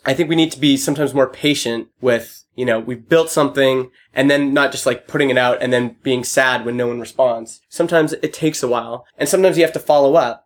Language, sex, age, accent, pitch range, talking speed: German, male, 20-39, American, 125-150 Hz, 245 wpm